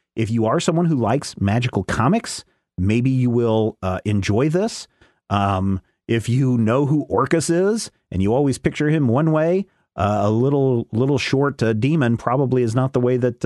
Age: 40-59